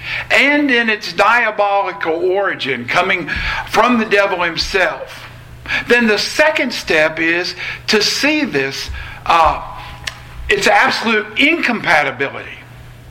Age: 50-69